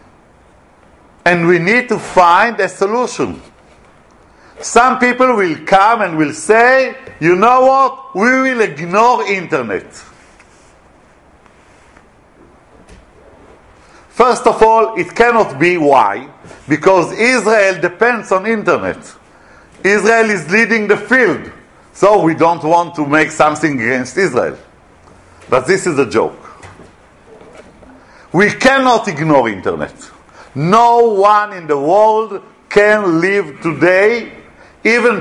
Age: 50-69